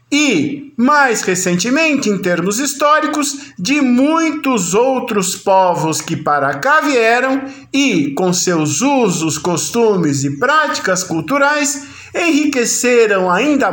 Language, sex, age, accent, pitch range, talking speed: Portuguese, male, 50-69, Brazilian, 170-275 Hz, 105 wpm